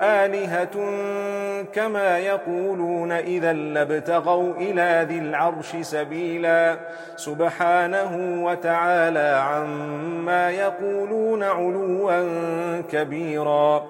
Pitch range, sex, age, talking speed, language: 165-185 Hz, male, 40-59, 65 wpm, English